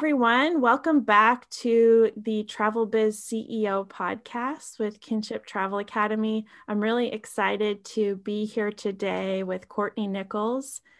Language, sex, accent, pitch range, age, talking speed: English, female, American, 205-245 Hz, 20-39, 125 wpm